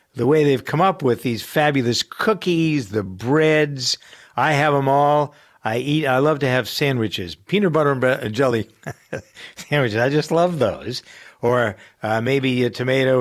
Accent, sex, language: American, male, English